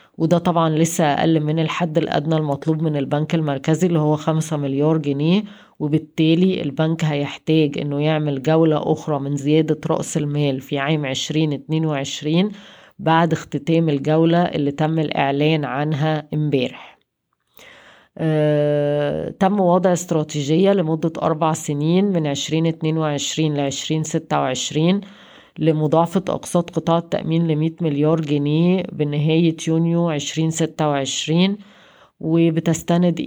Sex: female